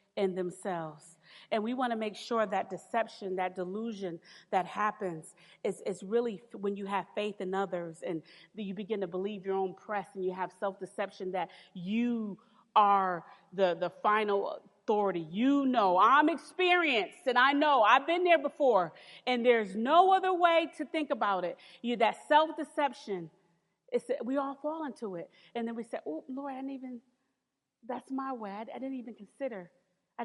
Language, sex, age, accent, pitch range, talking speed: English, female, 40-59, American, 185-255 Hz, 175 wpm